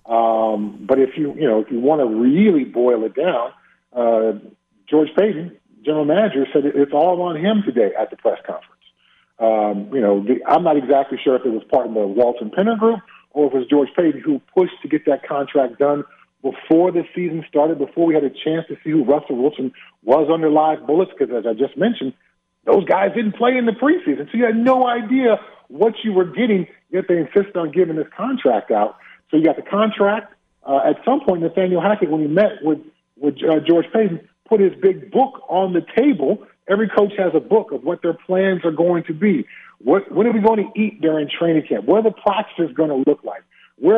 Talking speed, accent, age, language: 220 wpm, American, 50-69, English